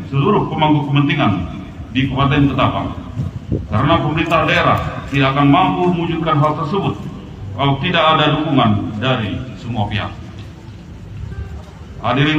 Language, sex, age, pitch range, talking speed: Indonesian, male, 40-59, 115-150 Hz, 110 wpm